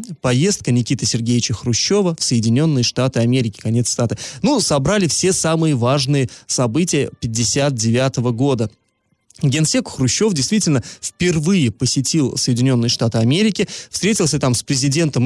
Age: 20-39